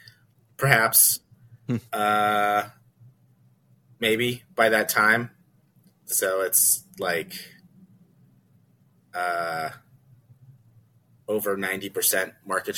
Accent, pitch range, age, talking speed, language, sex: American, 110-165 Hz, 30-49, 65 wpm, English, male